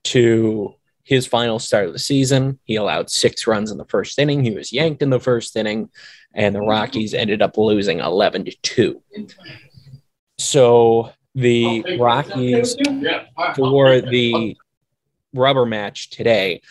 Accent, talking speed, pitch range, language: American, 140 wpm, 115-140 Hz, English